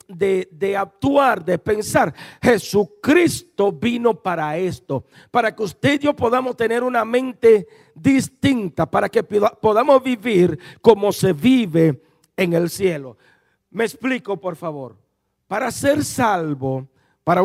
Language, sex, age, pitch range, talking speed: Spanish, male, 50-69, 175-245 Hz, 125 wpm